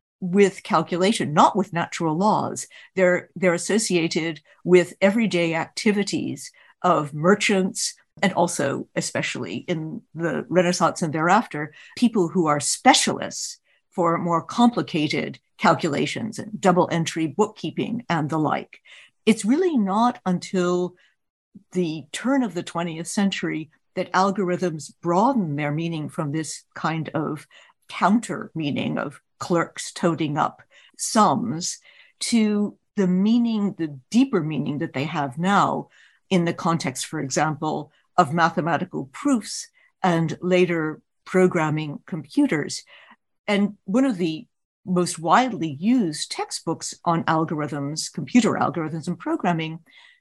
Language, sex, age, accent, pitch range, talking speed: English, female, 60-79, American, 165-210 Hz, 120 wpm